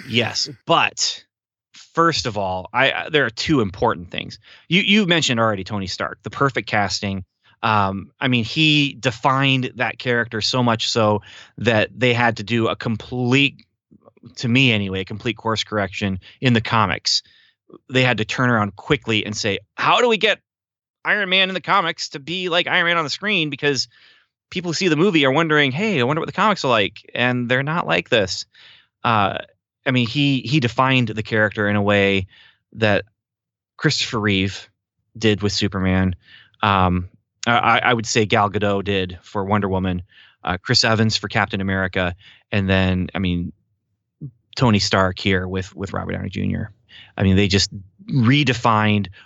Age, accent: 30-49, American